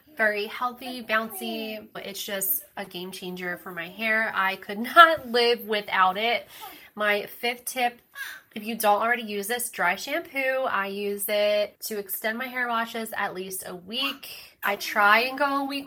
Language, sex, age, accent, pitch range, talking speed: English, female, 20-39, American, 205-255 Hz, 180 wpm